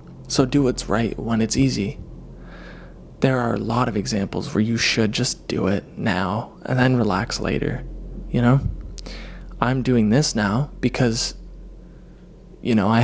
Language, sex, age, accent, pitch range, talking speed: English, male, 20-39, American, 115-140 Hz, 155 wpm